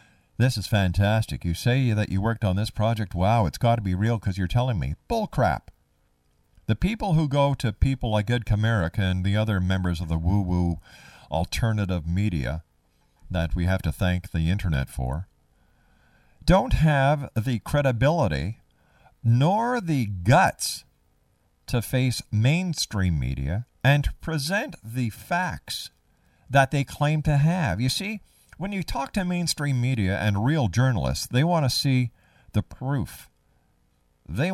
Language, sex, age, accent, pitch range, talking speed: English, male, 50-69, American, 85-130 Hz, 150 wpm